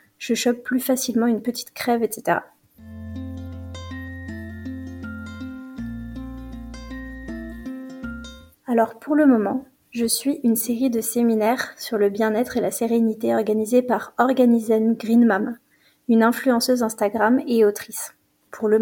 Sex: female